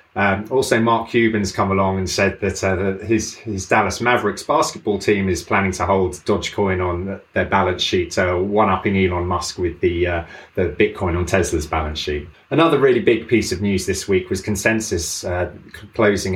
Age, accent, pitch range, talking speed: 30-49, British, 95-110 Hz, 195 wpm